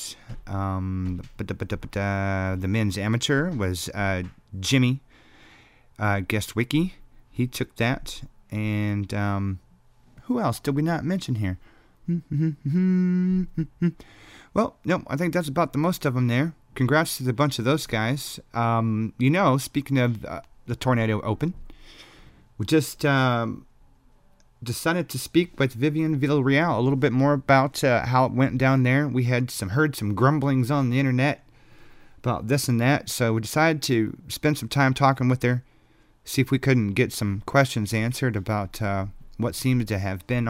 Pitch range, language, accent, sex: 110-140 Hz, English, American, male